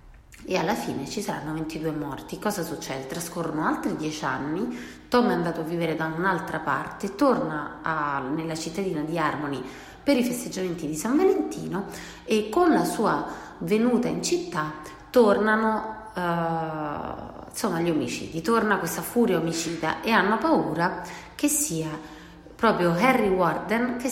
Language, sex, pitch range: Italian, female, 160-205 Hz